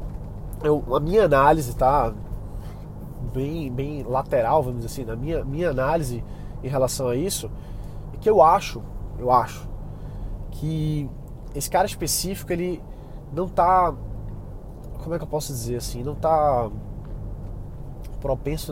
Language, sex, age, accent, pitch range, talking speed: Portuguese, male, 20-39, Brazilian, 125-165 Hz, 135 wpm